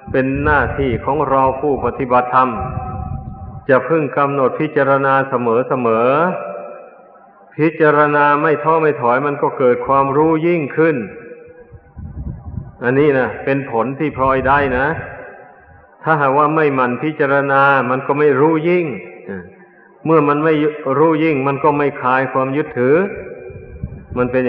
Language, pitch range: Thai, 130-150 Hz